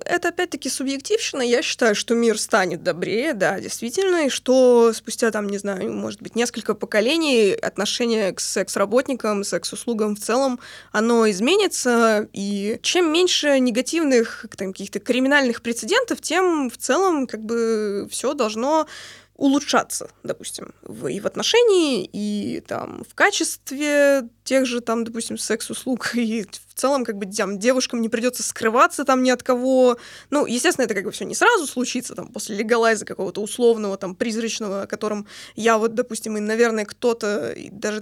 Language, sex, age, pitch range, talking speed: Russian, female, 20-39, 220-280 Hz, 155 wpm